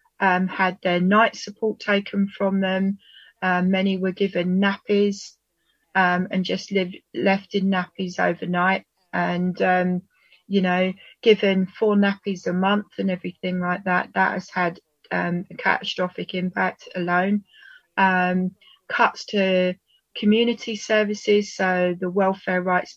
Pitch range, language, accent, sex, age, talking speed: 185-205 Hz, English, British, female, 30-49, 130 wpm